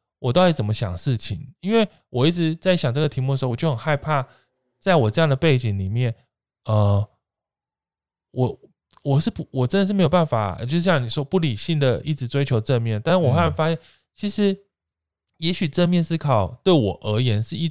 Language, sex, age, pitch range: Chinese, male, 20-39, 105-150 Hz